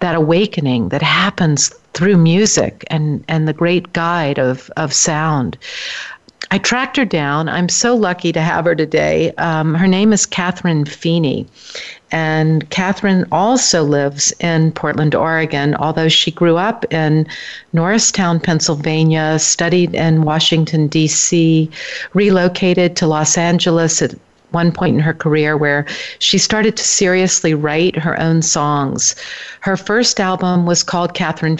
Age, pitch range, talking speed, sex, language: 50-69, 155-185 Hz, 140 wpm, female, English